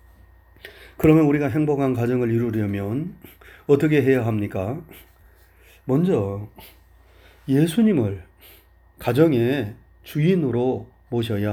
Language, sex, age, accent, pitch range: Korean, male, 40-59, native, 105-170 Hz